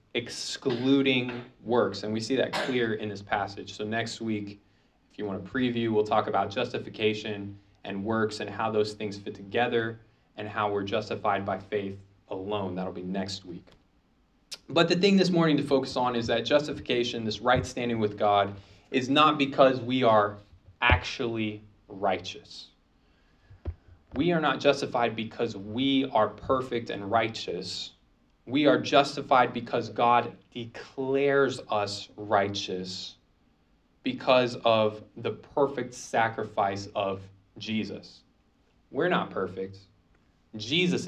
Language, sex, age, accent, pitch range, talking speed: English, male, 20-39, American, 100-120 Hz, 135 wpm